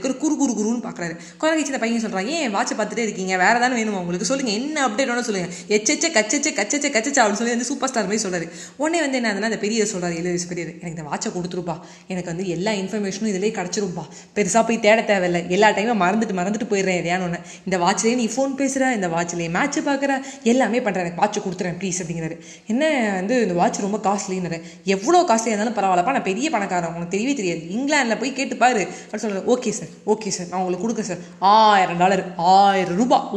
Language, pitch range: Tamil, 180-235 Hz